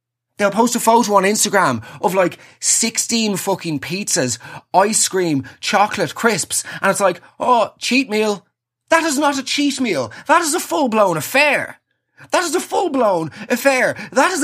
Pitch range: 165-250 Hz